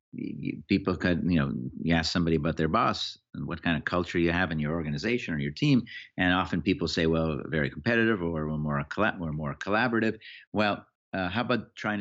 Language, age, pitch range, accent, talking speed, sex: English, 50-69, 80-100 Hz, American, 200 wpm, male